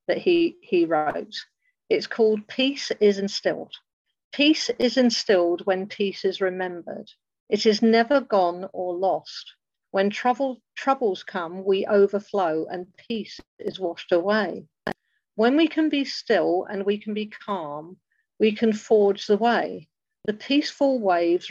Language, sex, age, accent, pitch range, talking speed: English, female, 50-69, British, 190-240 Hz, 140 wpm